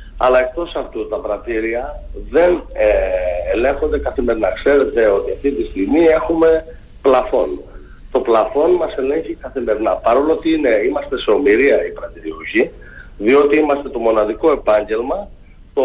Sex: male